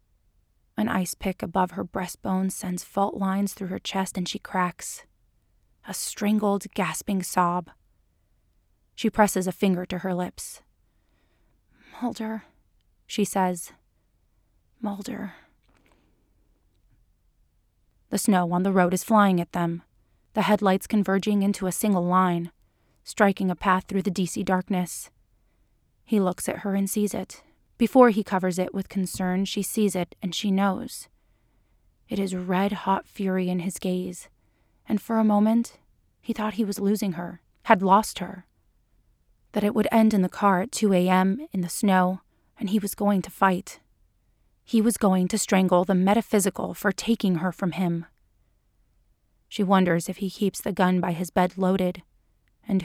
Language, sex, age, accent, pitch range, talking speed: English, female, 20-39, American, 180-205 Hz, 155 wpm